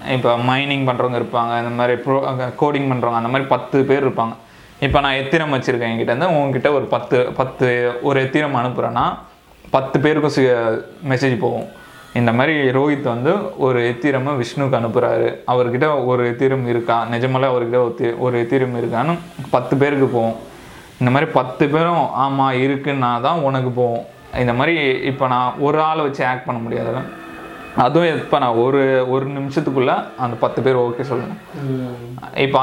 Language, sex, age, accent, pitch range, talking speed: Tamil, male, 20-39, native, 120-140 Hz, 155 wpm